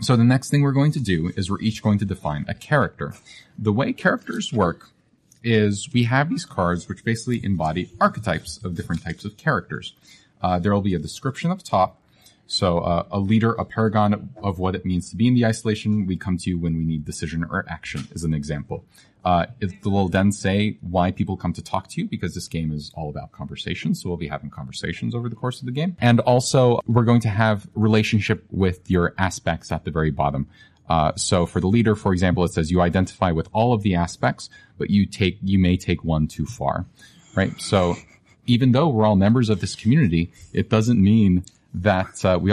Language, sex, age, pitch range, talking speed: English, male, 30-49, 90-110 Hz, 220 wpm